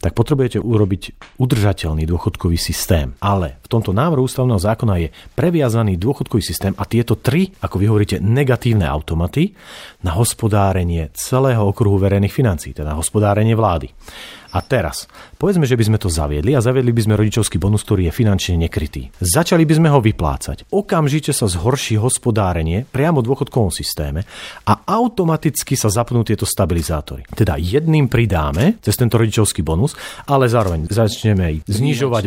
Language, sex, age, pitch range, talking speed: Slovak, male, 40-59, 95-130 Hz, 150 wpm